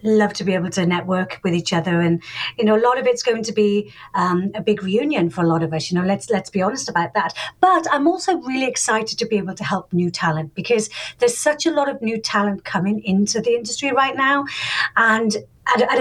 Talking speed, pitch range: 240 wpm, 190-245 Hz